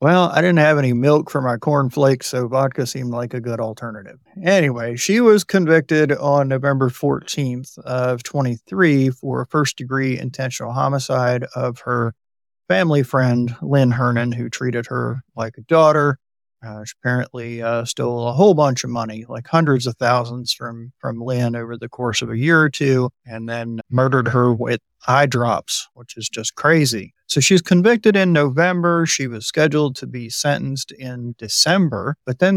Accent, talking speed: American, 170 wpm